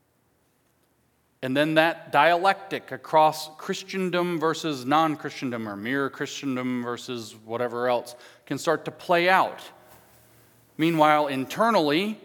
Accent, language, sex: American, English, male